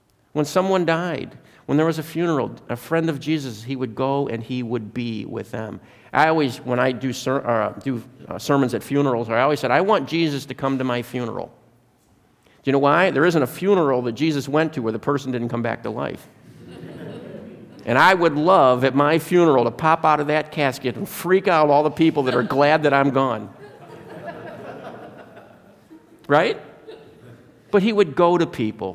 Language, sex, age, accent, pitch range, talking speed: English, male, 50-69, American, 110-150 Hz, 195 wpm